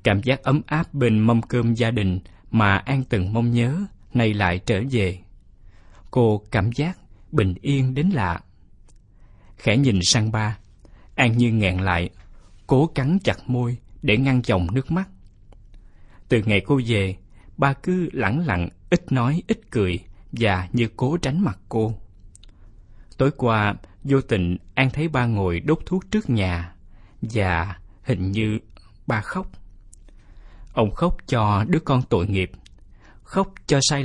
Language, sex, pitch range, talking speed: Vietnamese, male, 95-130 Hz, 155 wpm